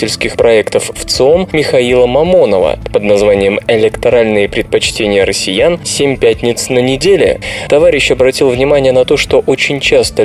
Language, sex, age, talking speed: Russian, male, 20-39, 130 wpm